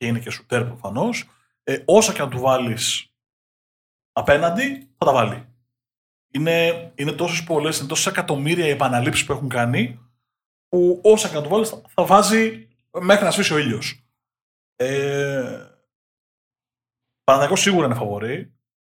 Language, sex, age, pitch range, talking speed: Greek, male, 30-49, 120-165 Hz, 145 wpm